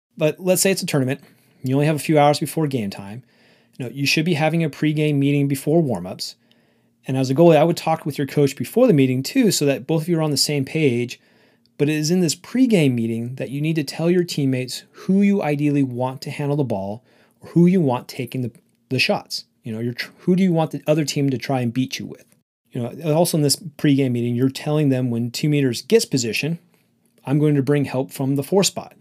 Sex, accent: male, American